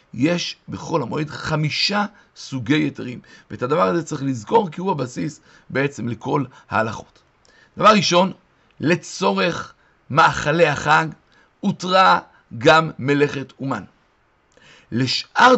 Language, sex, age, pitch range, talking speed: Hebrew, male, 60-79, 135-185 Hz, 105 wpm